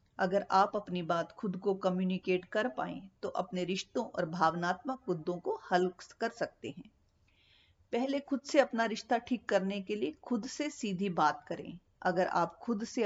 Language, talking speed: Hindi, 175 wpm